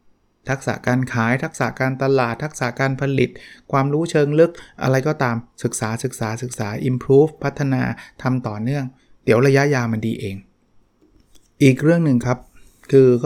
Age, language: 20-39, Thai